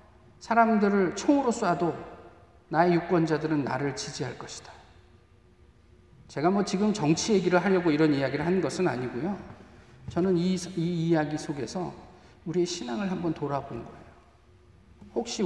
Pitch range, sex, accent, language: 125-210 Hz, male, native, Korean